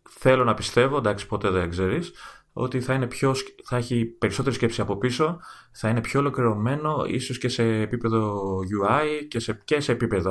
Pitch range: 95-130 Hz